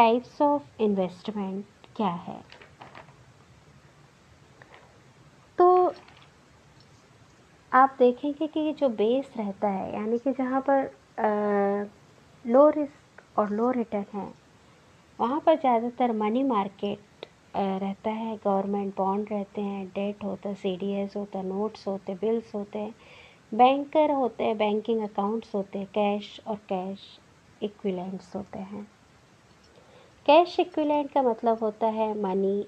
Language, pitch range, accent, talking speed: Hindi, 200-250 Hz, native, 115 wpm